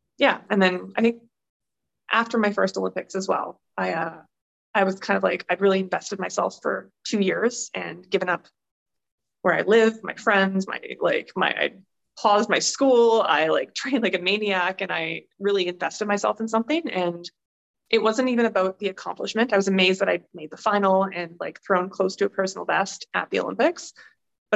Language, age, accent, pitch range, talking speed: English, 20-39, American, 185-225 Hz, 195 wpm